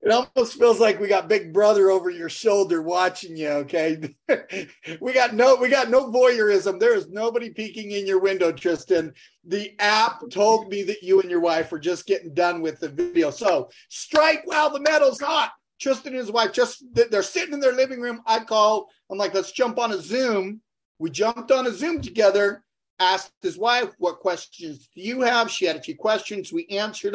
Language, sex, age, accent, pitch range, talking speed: English, male, 40-59, American, 185-250 Hz, 205 wpm